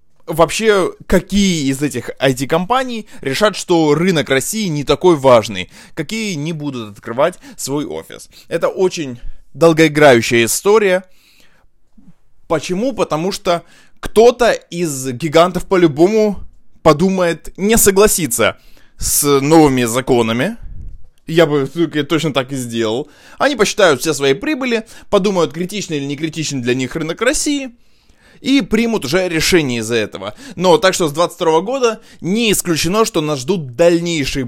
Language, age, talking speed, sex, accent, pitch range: Russian, 20-39, 125 wpm, male, native, 140-195 Hz